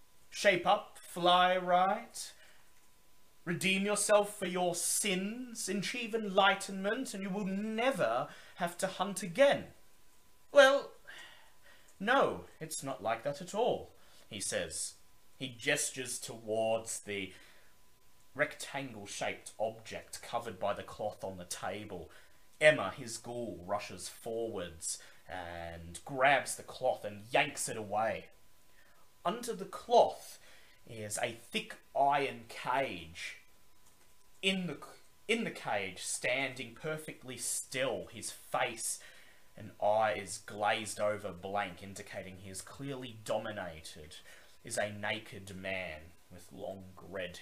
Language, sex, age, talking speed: English, male, 30-49, 115 wpm